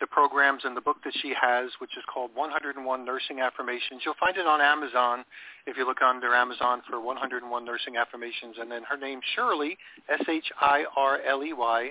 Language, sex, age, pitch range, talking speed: English, male, 40-59, 125-145 Hz, 170 wpm